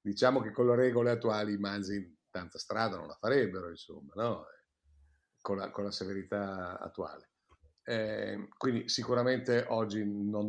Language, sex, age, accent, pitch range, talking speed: Italian, male, 50-69, native, 95-130 Hz, 145 wpm